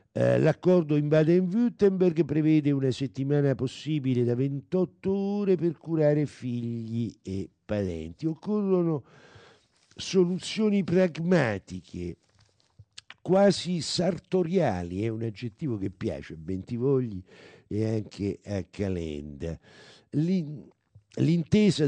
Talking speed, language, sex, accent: 90 wpm, Italian, male, native